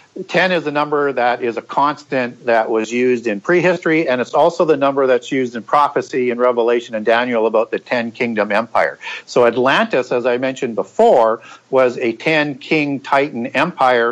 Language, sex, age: English, male, 50-69